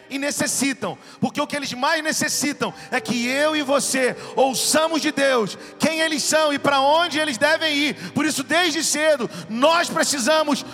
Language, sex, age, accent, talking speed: Portuguese, male, 40-59, Brazilian, 175 wpm